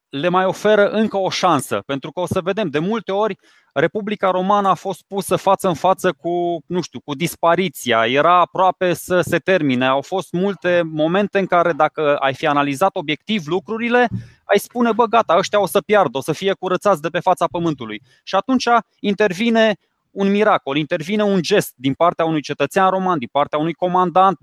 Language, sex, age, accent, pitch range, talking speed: Romanian, male, 20-39, native, 150-195 Hz, 190 wpm